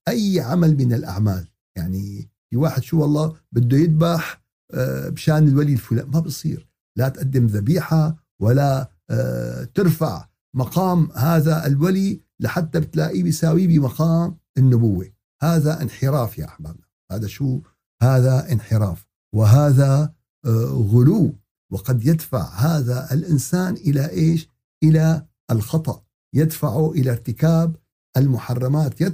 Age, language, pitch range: 50-69, Arabic, 120-165 Hz